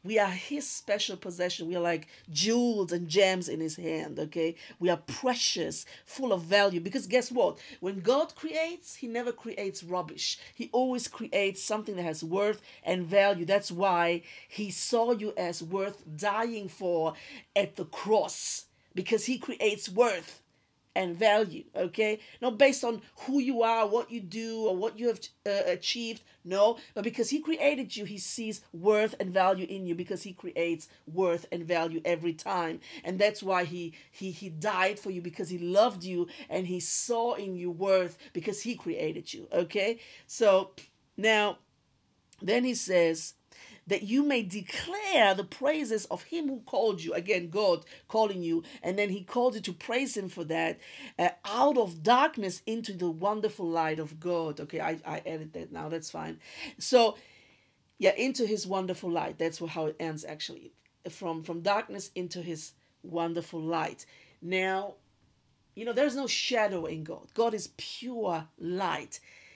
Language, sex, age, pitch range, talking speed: English, female, 50-69, 175-230 Hz, 170 wpm